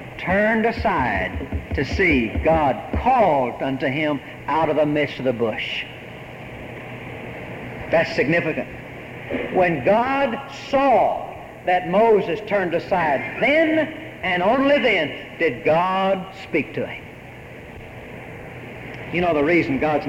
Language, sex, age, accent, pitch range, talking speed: English, male, 60-79, American, 150-220 Hz, 115 wpm